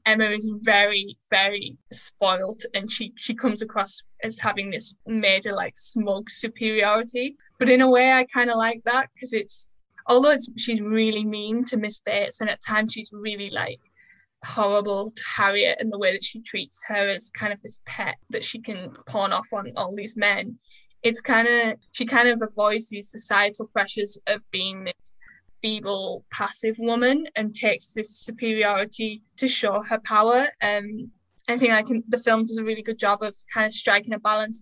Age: 10-29